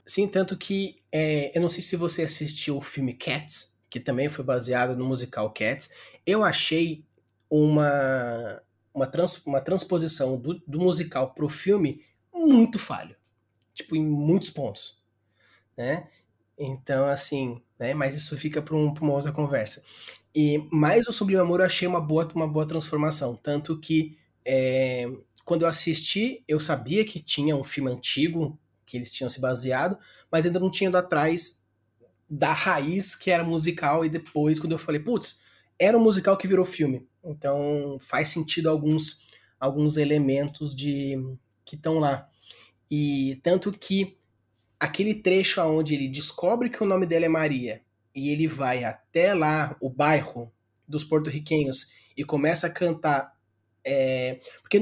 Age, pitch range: 20-39, 135-170 Hz